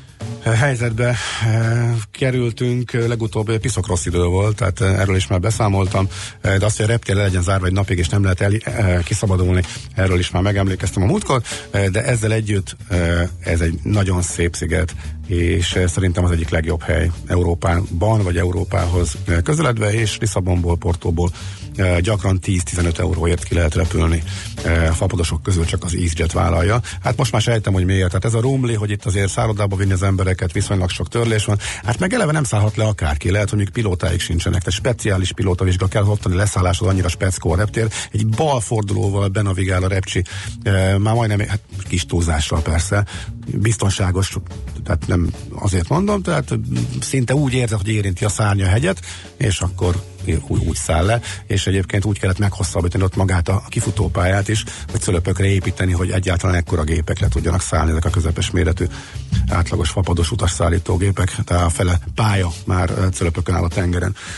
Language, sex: Hungarian, male